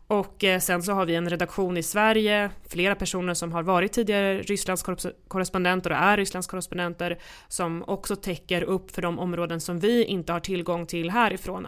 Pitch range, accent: 175-200 Hz, native